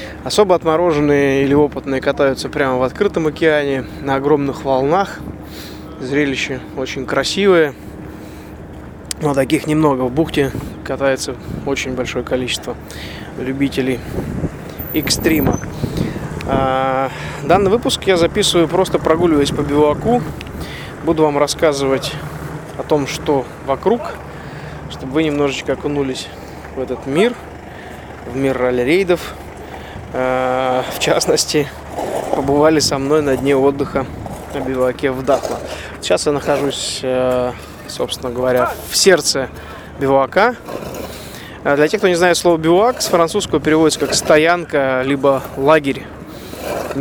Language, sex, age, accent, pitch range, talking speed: Russian, male, 20-39, native, 130-155 Hz, 110 wpm